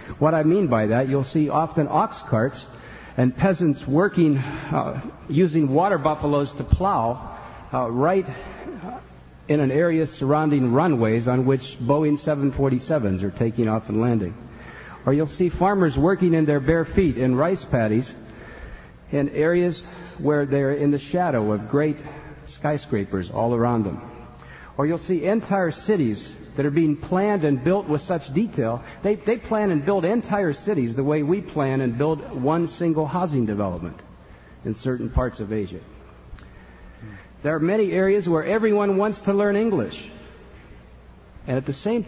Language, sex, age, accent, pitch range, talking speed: English, male, 50-69, American, 115-165 Hz, 155 wpm